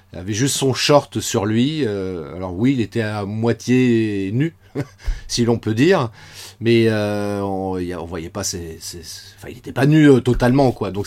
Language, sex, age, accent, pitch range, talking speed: French, male, 40-59, French, 100-140 Hz, 185 wpm